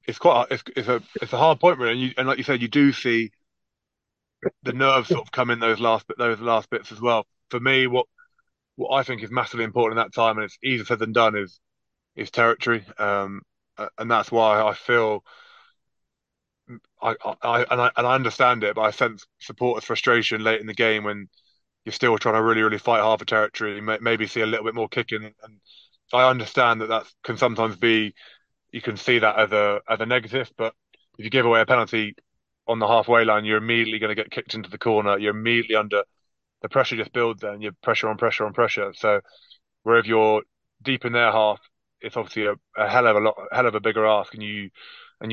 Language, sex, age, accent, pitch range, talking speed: English, male, 20-39, British, 110-125 Hz, 230 wpm